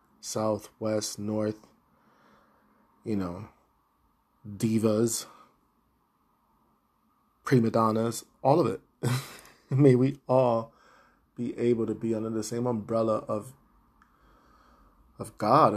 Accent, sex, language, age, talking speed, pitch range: American, male, English, 20-39, 95 wpm, 110-120 Hz